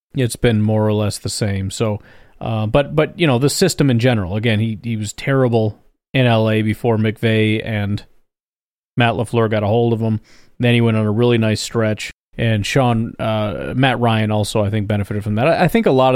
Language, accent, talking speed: English, American, 210 wpm